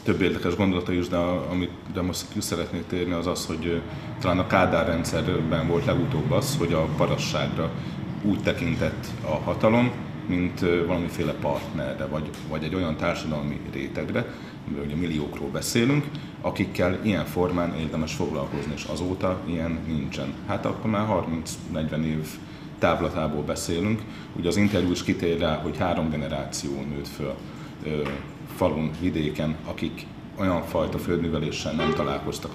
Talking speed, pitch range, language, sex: 135 wpm, 75-90 Hz, Hungarian, male